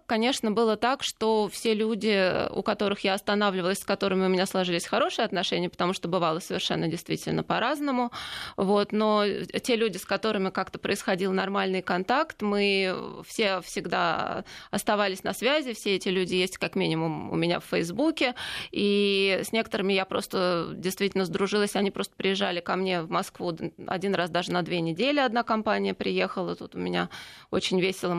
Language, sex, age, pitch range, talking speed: Russian, female, 20-39, 185-225 Hz, 160 wpm